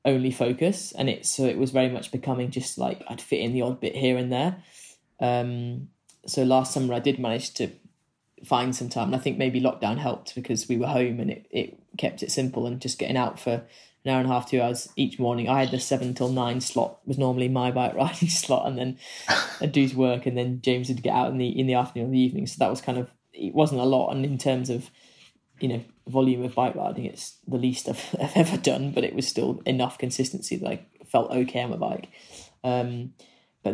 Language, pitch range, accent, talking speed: English, 125-130 Hz, British, 240 wpm